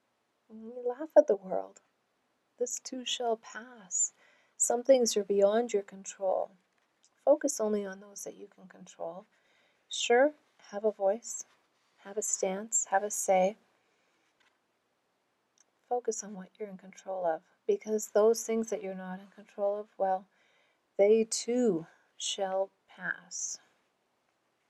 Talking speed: 130 wpm